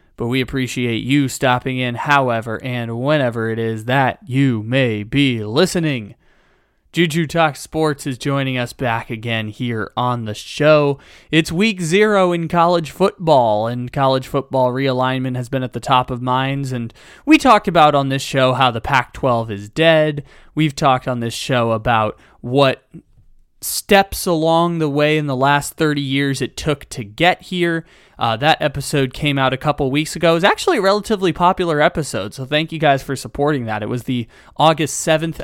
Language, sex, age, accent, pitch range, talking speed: English, male, 20-39, American, 125-155 Hz, 180 wpm